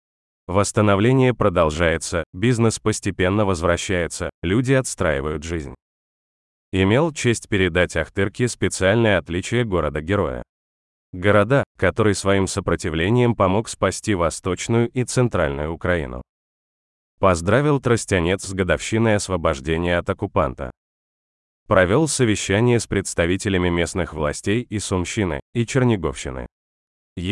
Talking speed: 90 wpm